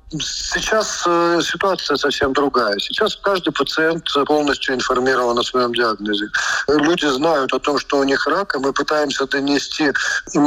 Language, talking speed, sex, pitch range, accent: Russian, 145 wpm, male, 130-160 Hz, native